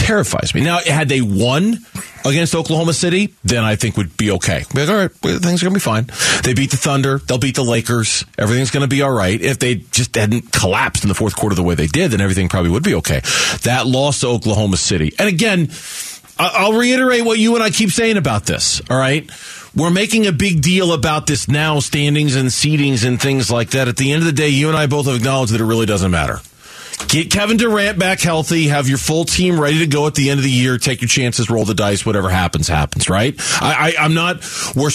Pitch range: 120-165 Hz